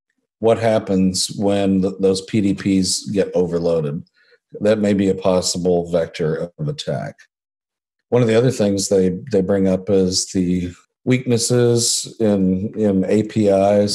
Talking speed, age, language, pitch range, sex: 135 wpm, 50-69, English, 95-110 Hz, male